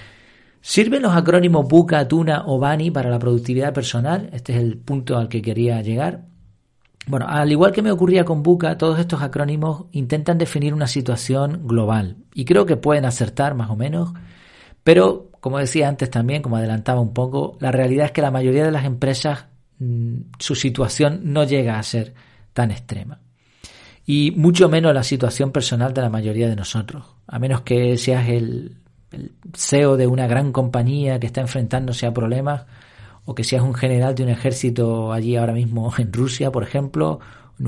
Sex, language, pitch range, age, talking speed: male, Spanish, 115-150 Hz, 40-59, 180 wpm